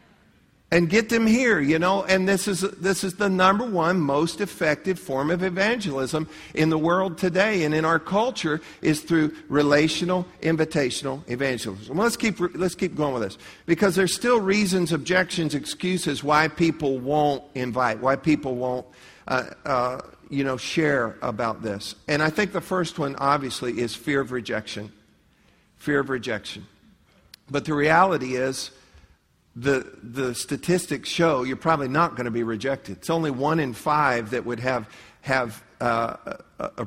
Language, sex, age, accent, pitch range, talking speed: English, male, 50-69, American, 130-175 Hz, 165 wpm